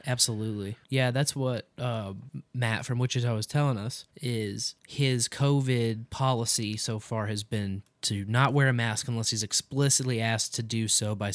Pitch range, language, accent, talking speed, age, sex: 115-150 Hz, English, American, 170 wpm, 20-39, male